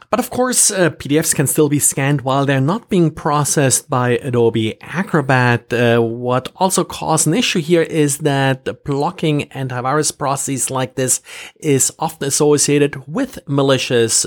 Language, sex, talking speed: English, male, 150 wpm